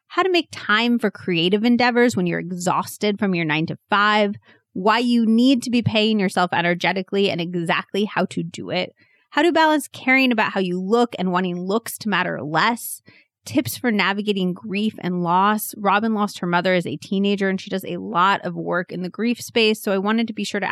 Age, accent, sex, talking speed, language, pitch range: 30-49, American, female, 215 wpm, English, 180-230 Hz